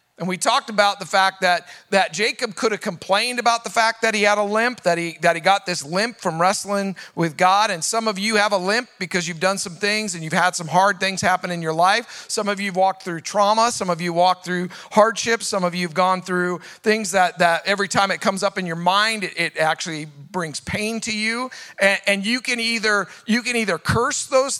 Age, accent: 40-59, American